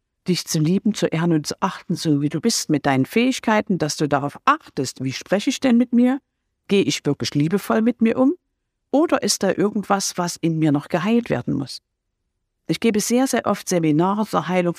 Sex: female